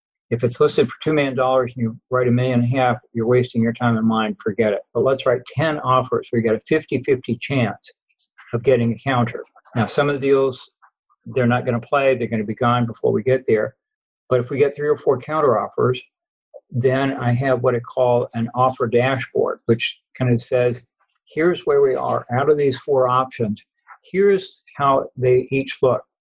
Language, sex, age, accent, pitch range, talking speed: English, male, 60-79, American, 120-155 Hz, 210 wpm